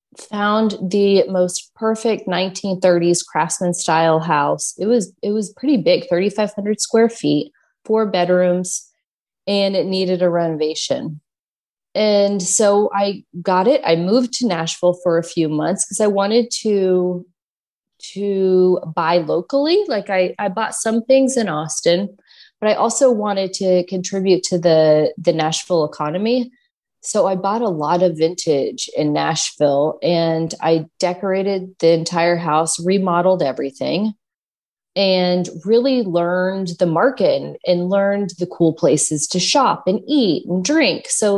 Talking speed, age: 140 wpm, 30-49